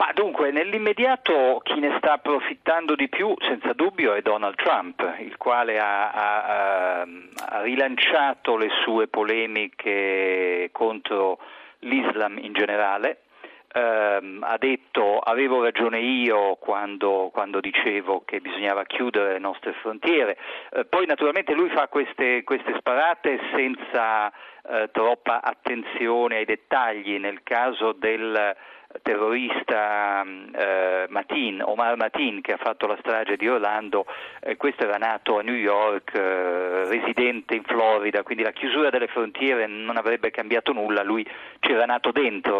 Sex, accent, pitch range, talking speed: male, native, 105-145 Hz, 125 wpm